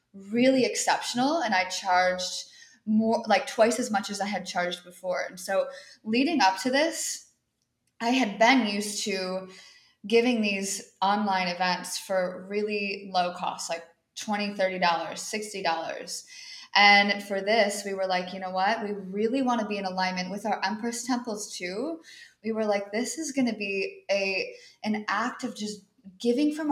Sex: female